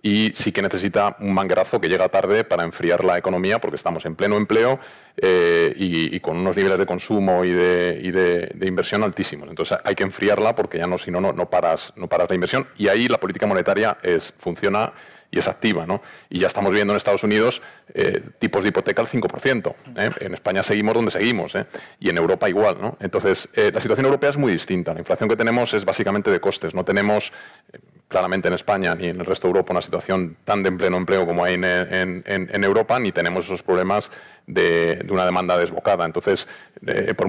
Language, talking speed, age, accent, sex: Spanish, 220 wpm, 30-49, Spanish, male